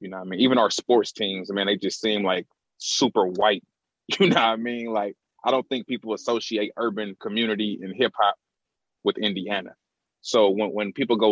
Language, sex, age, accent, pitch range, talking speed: English, male, 30-49, American, 105-120 Hz, 210 wpm